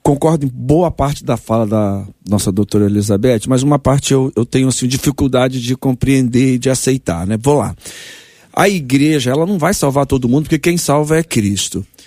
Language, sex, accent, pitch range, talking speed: Portuguese, male, Brazilian, 125-175 Hz, 195 wpm